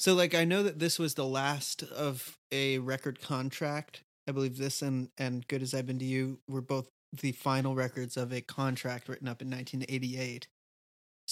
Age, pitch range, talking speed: 30-49, 130-150 Hz, 190 wpm